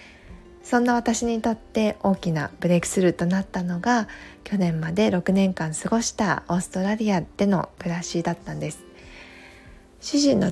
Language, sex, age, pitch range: Japanese, female, 20-39, 160-200 Hz